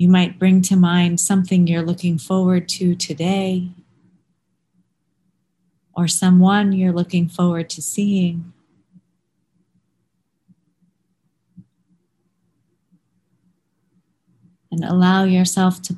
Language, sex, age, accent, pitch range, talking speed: English, female, 30-49, American, 170-185 Hz, 85 wpm